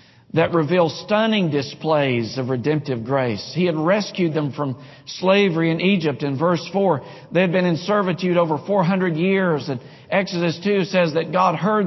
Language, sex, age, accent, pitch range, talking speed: English, male, 50-69, American, 145-180 Hz, 165 wpm